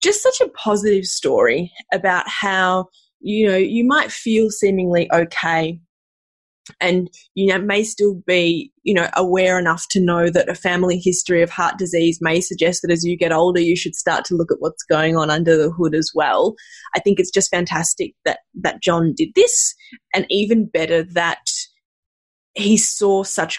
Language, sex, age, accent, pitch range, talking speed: English, female, 20-39, Australian, 165-200 Hz, 180 wpm